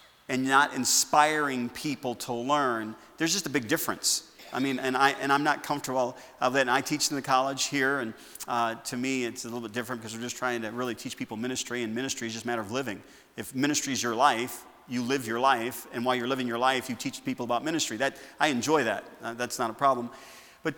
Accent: American